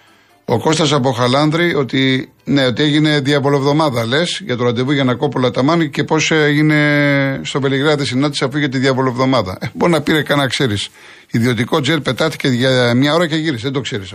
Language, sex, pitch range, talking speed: Greek, male, 115-145 Hz, 185 wpm